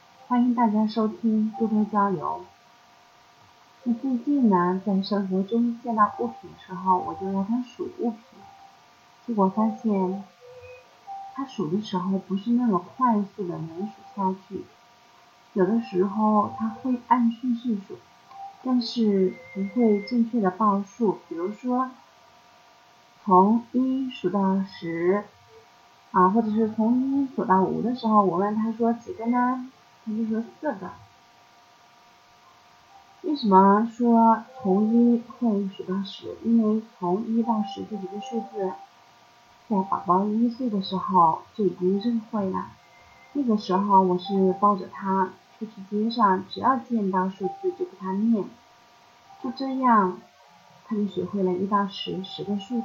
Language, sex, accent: Chinese, female, native